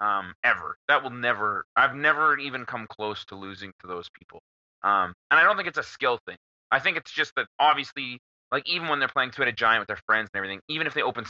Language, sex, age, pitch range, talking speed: English, male, 30-49, 105-140 Hz, 245 wpm